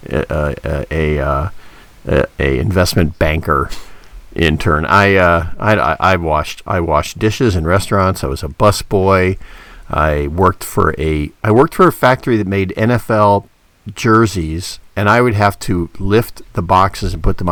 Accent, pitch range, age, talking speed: American, 85-110 Hz, 50-69, 160 wpm